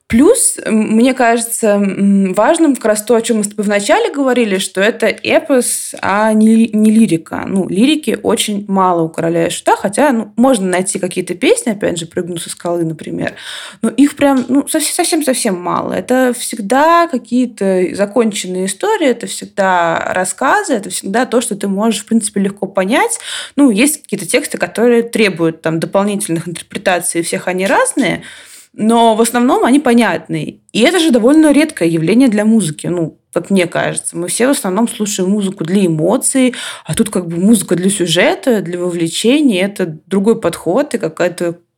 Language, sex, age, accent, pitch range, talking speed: Russian, female, 20-39, native, 185-245 Hz, 165 wpm